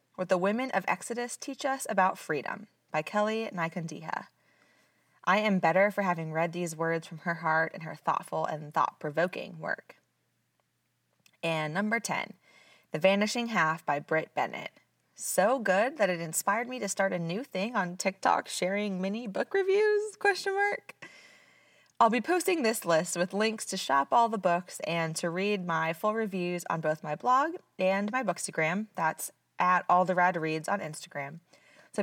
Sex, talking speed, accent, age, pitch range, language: female, 170 wpm, American, 20-39, 170-225 Hz, English